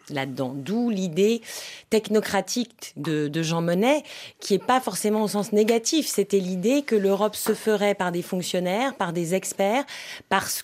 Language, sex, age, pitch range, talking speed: French, female, 30-49, 180-235 Hz, 160 wpm